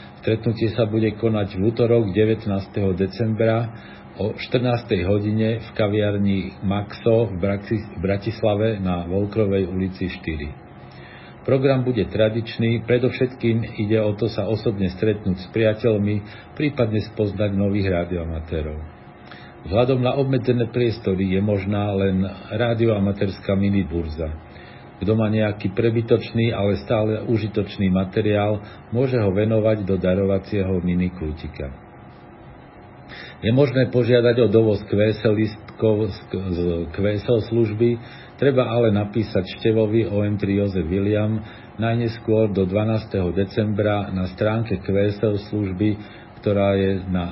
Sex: male